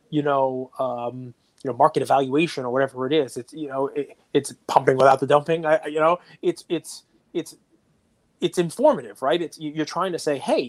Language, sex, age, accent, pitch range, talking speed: English, male, 30-49, American, 135-170 Hz, 195 wpm